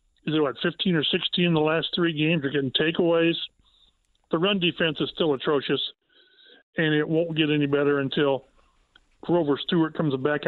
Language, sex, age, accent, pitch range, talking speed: English, male, 40-59, American, 145-175 Hz, 185 wpm